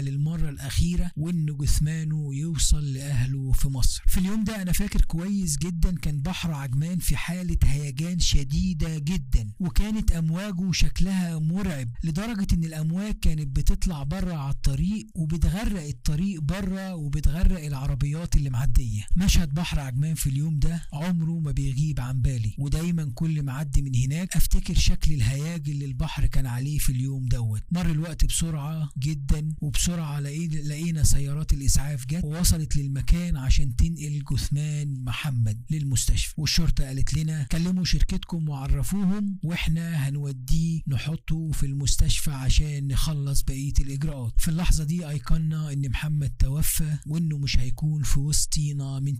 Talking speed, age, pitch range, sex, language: 140 wpm, 50-69, 140-165 Hz, male, Arabic